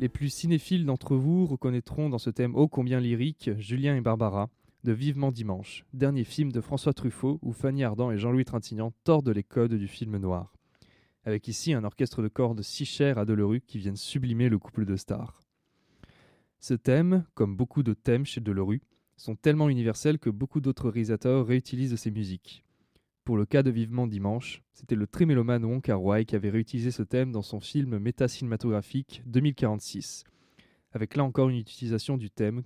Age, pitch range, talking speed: 20-39, 110-135 Hz, 180 wpm